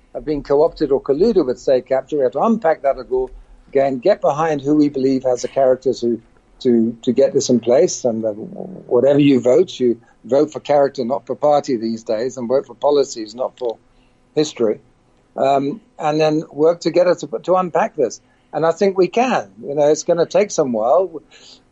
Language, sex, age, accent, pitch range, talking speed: English, male, 50-69, British, 135-170 Hz, 195 wpm